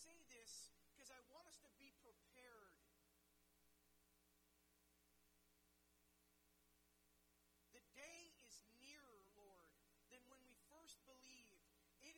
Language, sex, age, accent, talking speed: English, male, 40-59, American, 100 wpm